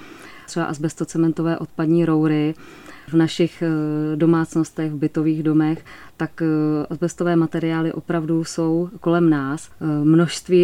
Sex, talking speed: female, 100 wpm